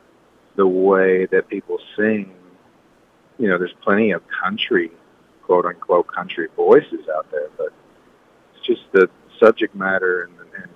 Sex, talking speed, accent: male, 135 wpm, American